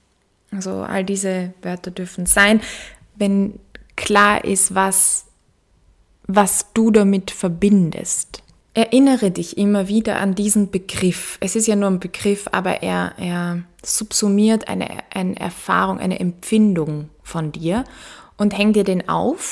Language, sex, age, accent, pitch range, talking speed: German, female, 20-39, German, 175-210 Hz, 130 wpm